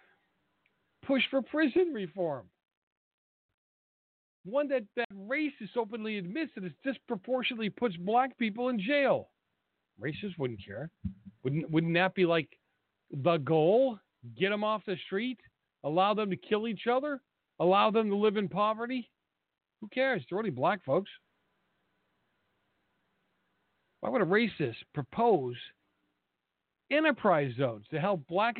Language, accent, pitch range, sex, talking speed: English, American, 140-220 Hz, male, 130 wpm